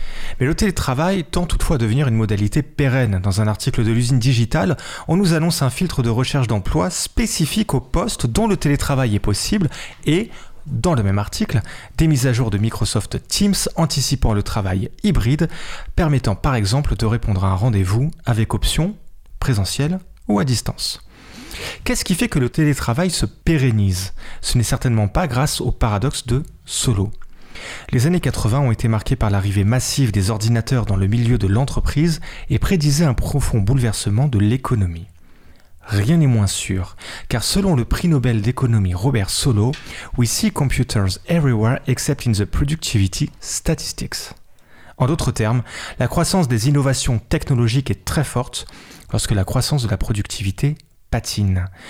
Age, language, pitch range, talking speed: 30-49, French, 105-145 Hz, 165 wpm